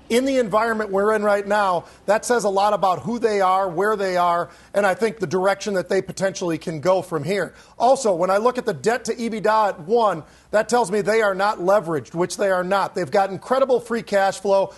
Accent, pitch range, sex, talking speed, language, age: American, 185-220 Hz, male, 235 wpm, English, 40-59